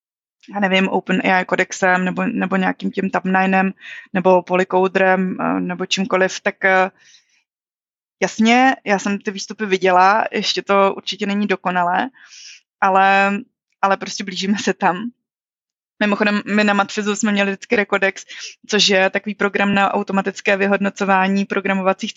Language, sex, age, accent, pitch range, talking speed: Czech, female, 20-39, native, 195-230 Hz, 125 wpm